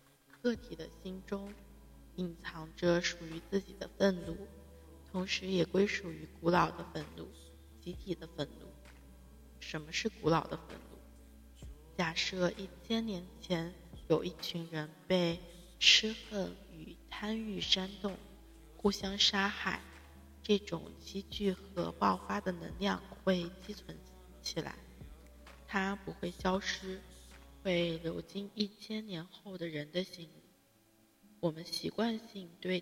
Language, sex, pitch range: Chinese, female, 145-195 Hz